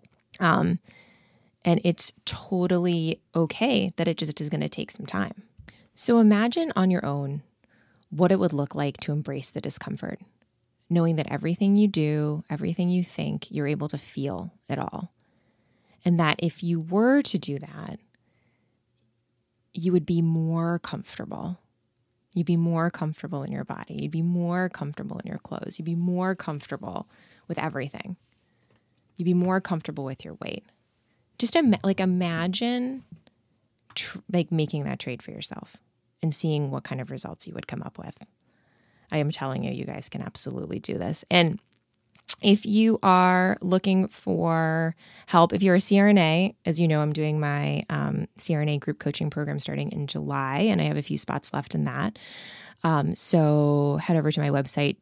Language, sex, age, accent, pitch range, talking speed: English, female, 20-39, American, 140-180 Hz, 170 wpm